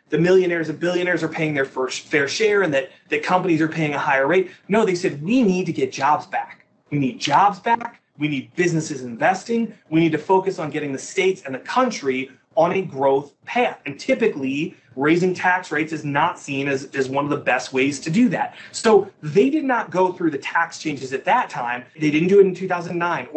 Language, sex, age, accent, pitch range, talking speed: English, male, 30-49, American, 145-205 Hz, 225 wpm